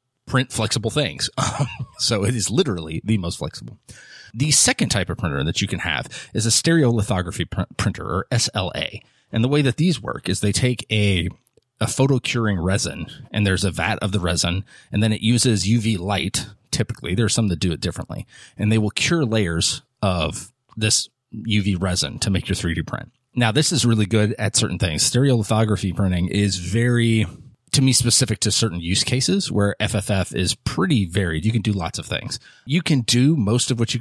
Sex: male